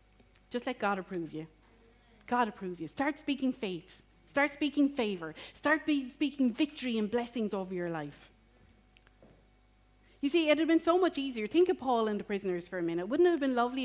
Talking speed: 190 wpm